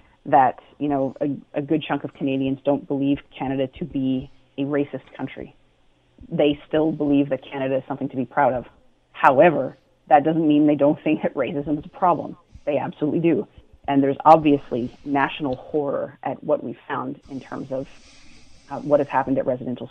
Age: 30-49